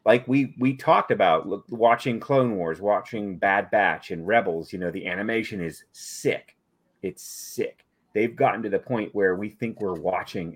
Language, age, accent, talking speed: English, 30-49, American, 175 wpm